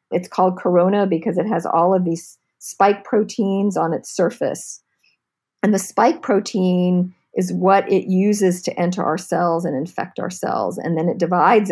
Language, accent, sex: English, American, female